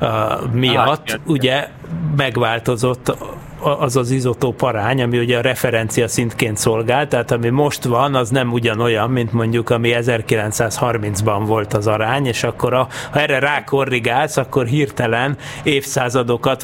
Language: Hungarian